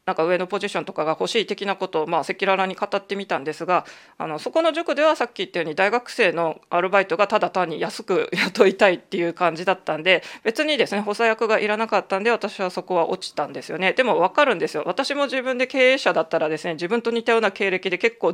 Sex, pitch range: female, 170-230 Hz